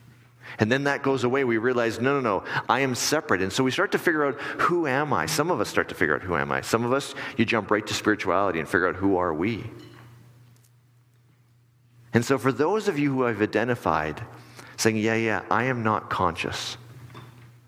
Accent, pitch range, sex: American, 105-120 Hz, male